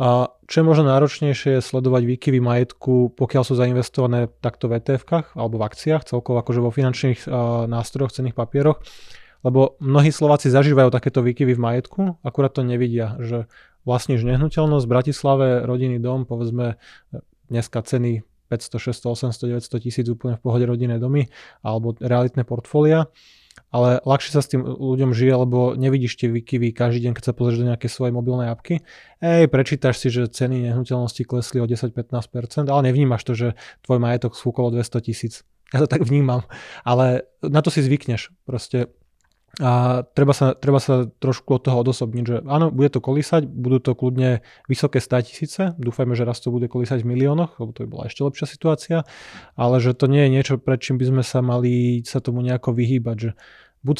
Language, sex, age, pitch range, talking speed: Slovak, male, 20-39, 120-135 Hz, 180 wpm